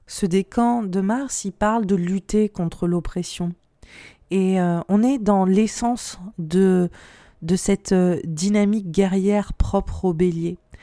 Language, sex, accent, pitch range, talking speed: French, female, French, 175-210 Hz, 140 wpm